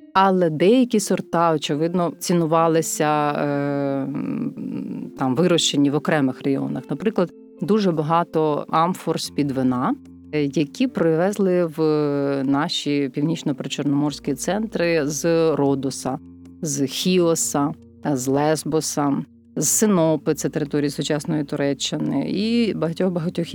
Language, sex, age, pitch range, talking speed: Ukrainian, female, 30-49, 145-180 Hz, 95 wpm